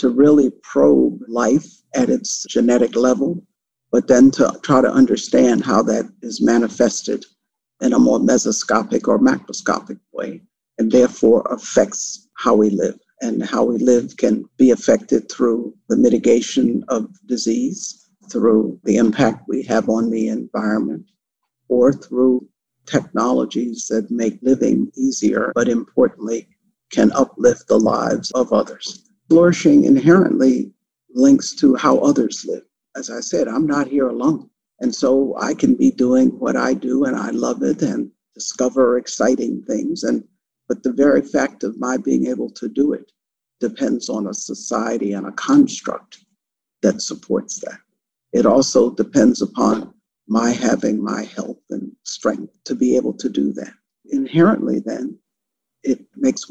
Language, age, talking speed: English, 50-69, 150 wpm